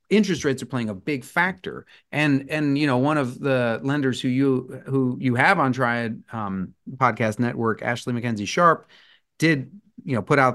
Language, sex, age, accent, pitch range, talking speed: English, male, 30-49, American, 115-150 Hz, 190 wpm